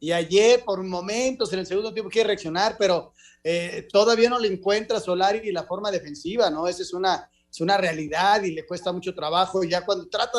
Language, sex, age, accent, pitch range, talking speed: Spanish, male, 30-49, Mexican, 180-225 Hz, 215 wpm